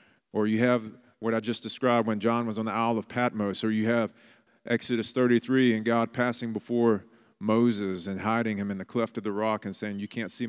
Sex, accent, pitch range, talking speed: male, American, 105-120 Hz, 225 wpm